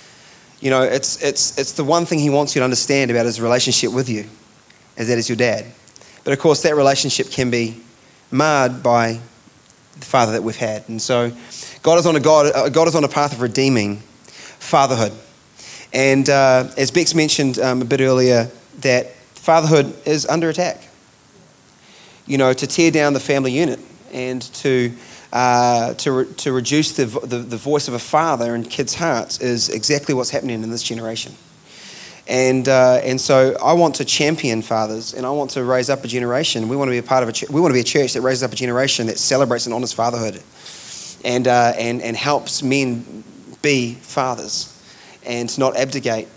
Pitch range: 115-140 Hz